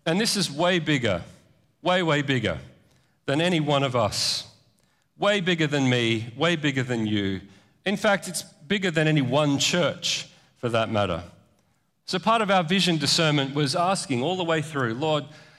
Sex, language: male, English